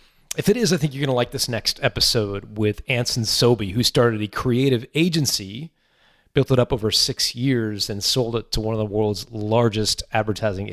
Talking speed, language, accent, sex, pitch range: 200 wpm, English, American, male, 110-135 Hz